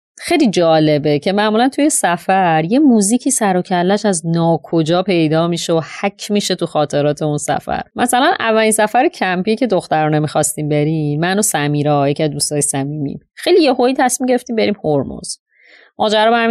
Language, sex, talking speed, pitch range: Persian, female, 160 wpm, 155-205 Hz